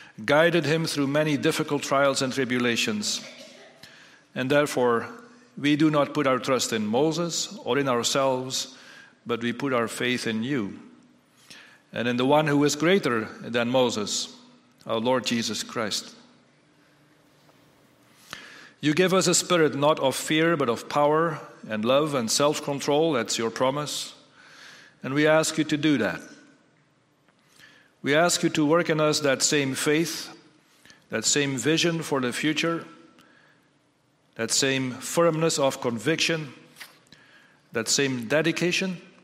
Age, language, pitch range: 40-59, English, 130-155 Hz